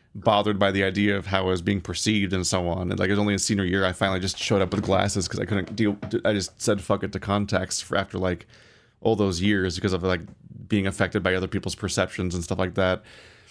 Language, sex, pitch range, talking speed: English, male, 100-120 Hz, 260 wpm